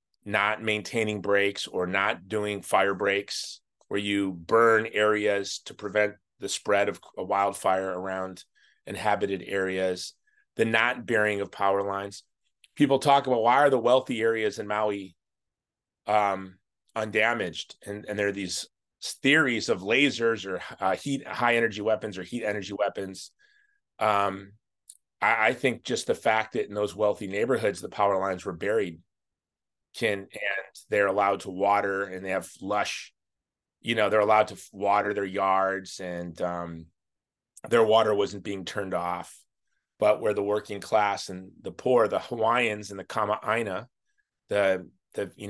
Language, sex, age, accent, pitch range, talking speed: English, male, 30-49, American, 95-110 Hz, 155 wpm